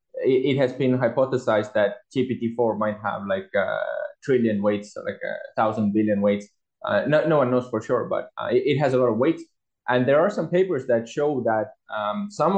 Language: Romanian